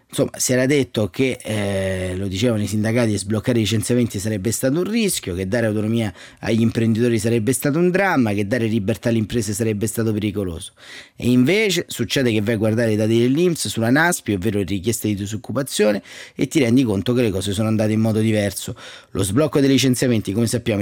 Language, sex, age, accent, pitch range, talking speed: Italian, male, 30-49, native, 110-135 Hz, 200 wpm